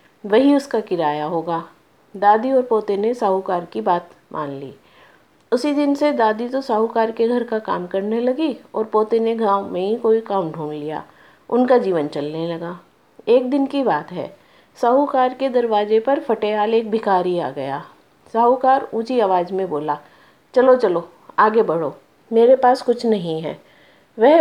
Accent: native